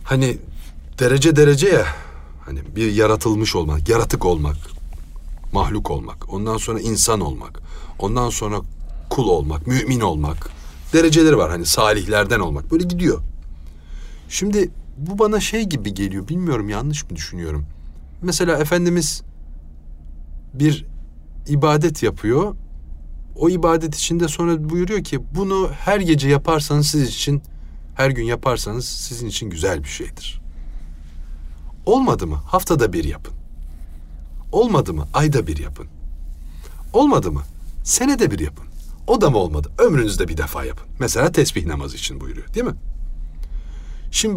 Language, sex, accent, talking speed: Turkish, male, native, 130 wpm